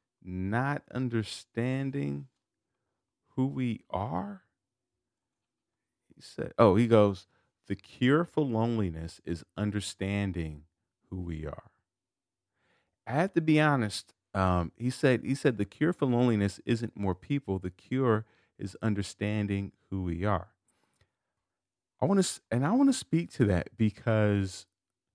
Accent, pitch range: American, 90-115 Hz